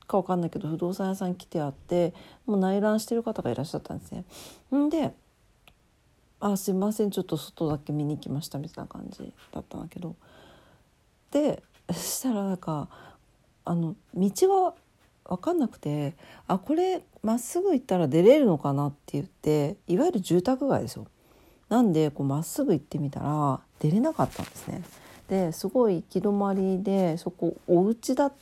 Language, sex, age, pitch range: Japanese, female, 40-59, 150-215 Hz